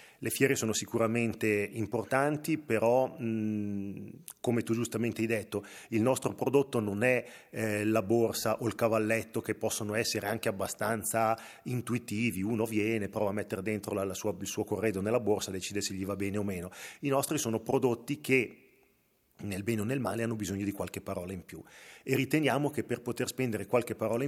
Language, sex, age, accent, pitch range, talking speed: Italian, male, 40-59, native, 105-120 Hz, 175 wpm